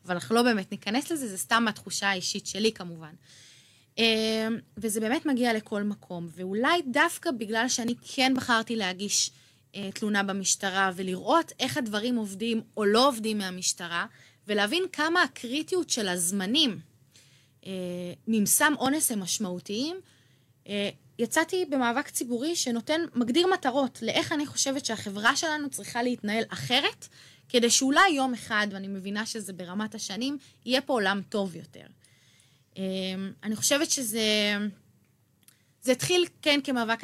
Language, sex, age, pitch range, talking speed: Hebrew, female, 20-39, 200-260 Hz, 130 wpm